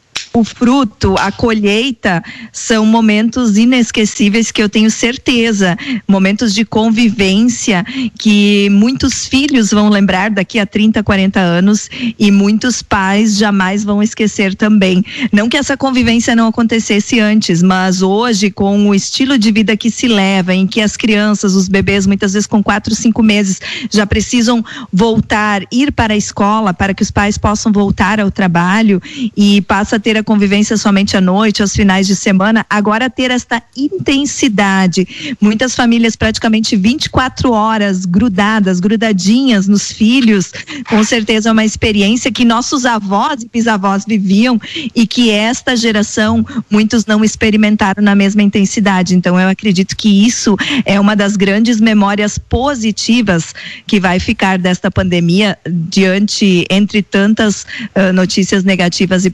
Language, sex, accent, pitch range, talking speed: Portuguese, female, Brazilian, 200-230 Hz, 145 wpm